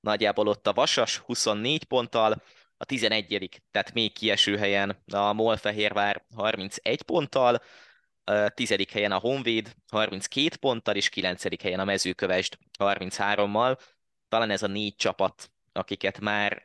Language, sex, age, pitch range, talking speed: Hungarian, male, 20-39, 100-110 Hz, 135 wpm